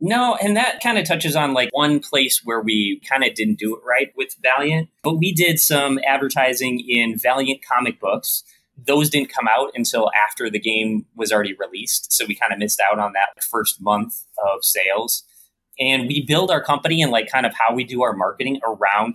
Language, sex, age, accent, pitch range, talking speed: English, male, 30-49, American, 110-145 Hz, 210 wpm